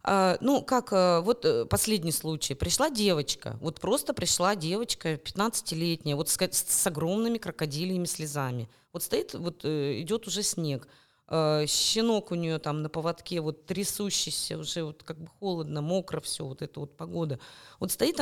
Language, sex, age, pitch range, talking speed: Russian, female, 20-39, 145-195 Hz, 150 wpm